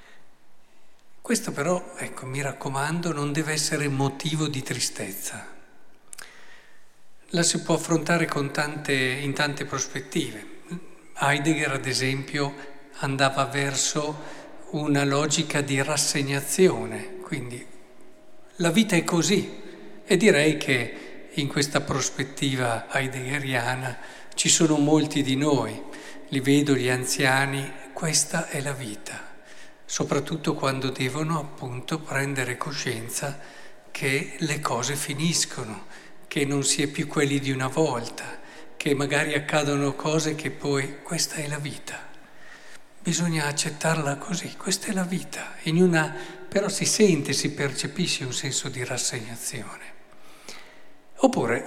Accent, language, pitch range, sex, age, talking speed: native, Italian, 135-160 Hz, male, 50-69, 120 wpm